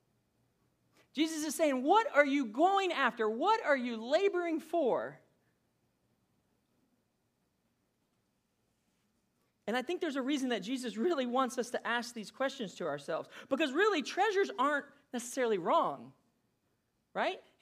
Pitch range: 200-285 Hz